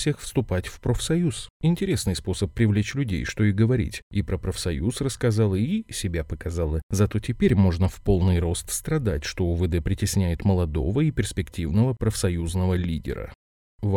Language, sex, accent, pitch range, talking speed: Russian, male, native, 90-120 Hz, 140 wpm